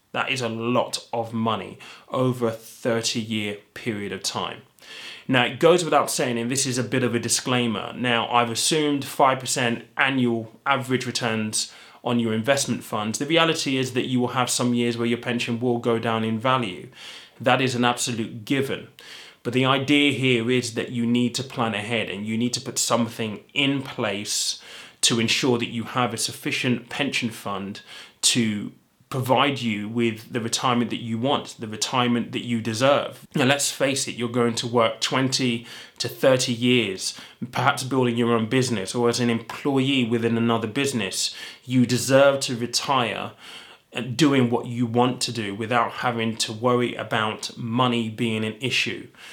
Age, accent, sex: 20-39, British, male